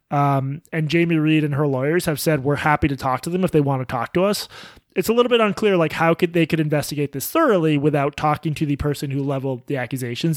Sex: male